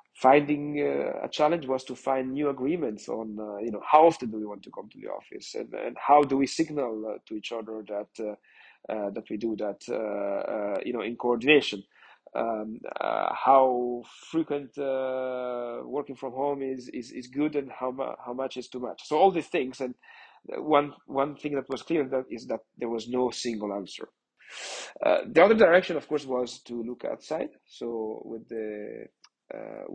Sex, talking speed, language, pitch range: male, 195 wpm, English, 110-135 Hz